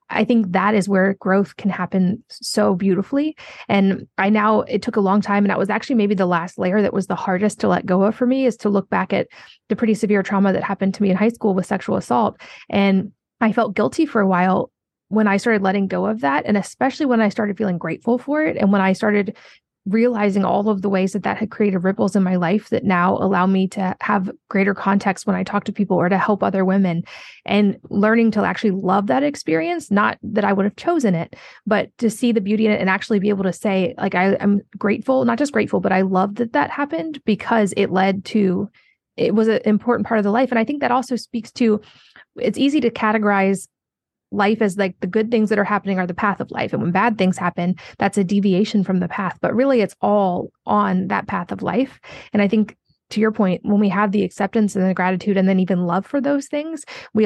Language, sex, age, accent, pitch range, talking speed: English, female, 20-39, American, 190-225 Hz, 240 wpm